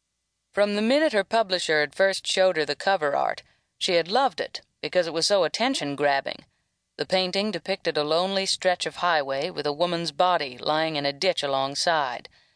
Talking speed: 180 wpm